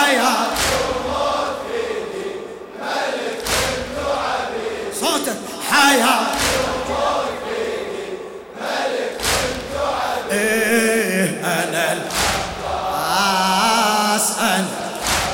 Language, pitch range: Arabic, 225-285 Hz